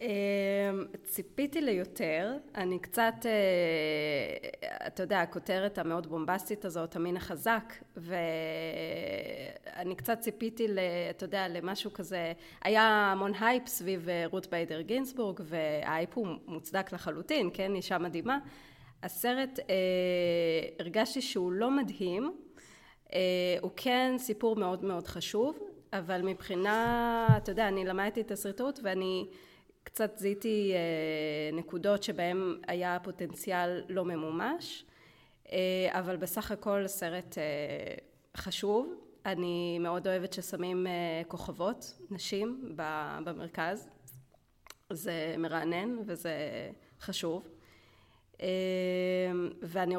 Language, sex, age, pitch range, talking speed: Hebrew, female, 20-39, 175-215 Hz, 95 wpm